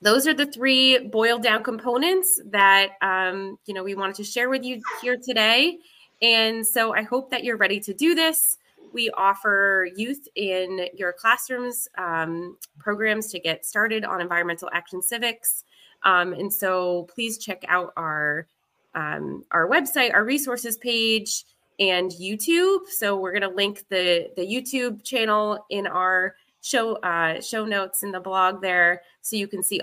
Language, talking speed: English, 160 wpm